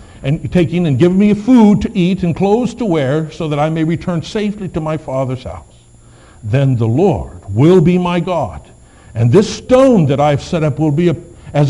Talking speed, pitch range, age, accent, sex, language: 210 wpm, 110-170 Hz, 60-79, American, male, English